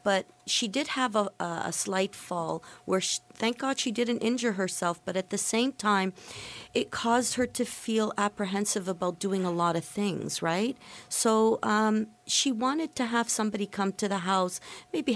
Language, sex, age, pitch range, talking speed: English, female, 50-69, 185-230 Hz, 180 wpm